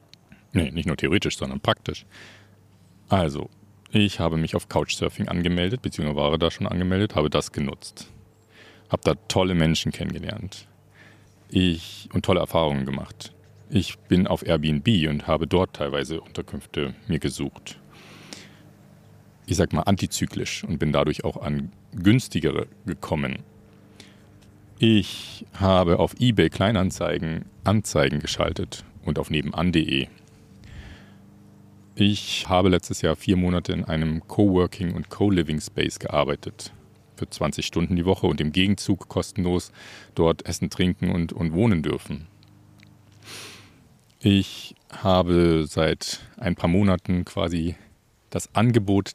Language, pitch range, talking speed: German, 85-100 Hz, 120 wpm